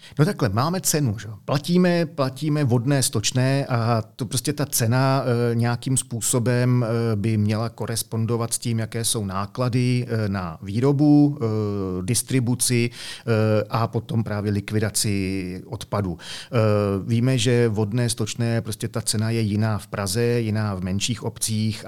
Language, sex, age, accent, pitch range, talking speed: Czech, male, 40-59, native, 105-115 Hz, 130 wpm